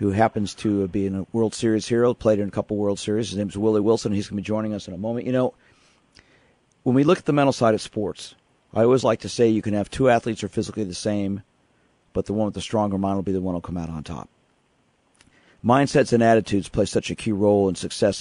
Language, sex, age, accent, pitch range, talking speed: English, male, 50-69, American, 100-115 Hz, 275 wpm